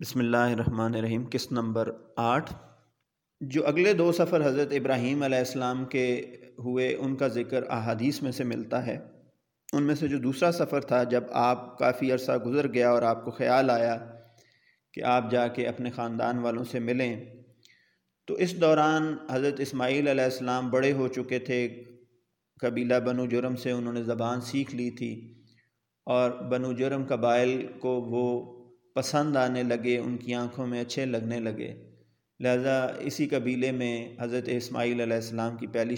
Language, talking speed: Urdu, 165 wpm